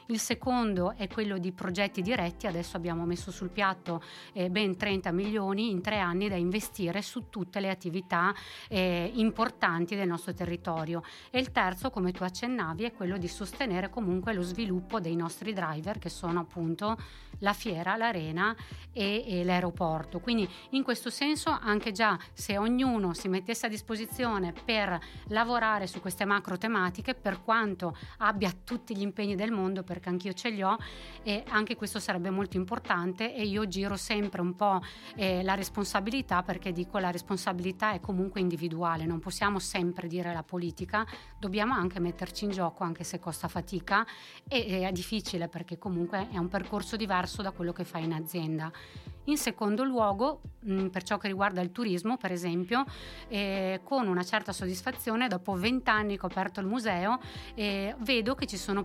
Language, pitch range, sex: Italian, 180-215 Hz, female